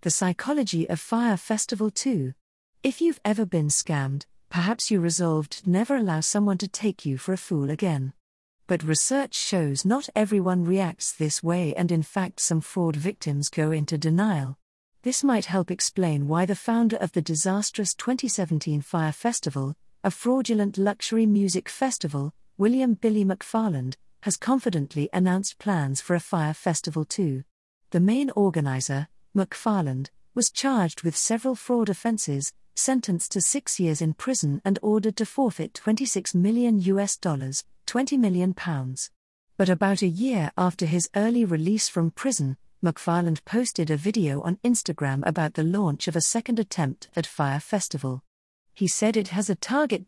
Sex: female